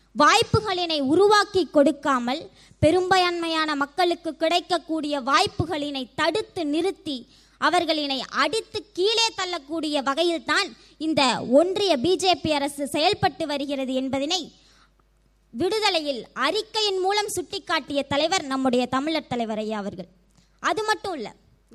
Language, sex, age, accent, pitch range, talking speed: Tamil, male, 20-39, native, 275-365 Hz, 90 wpm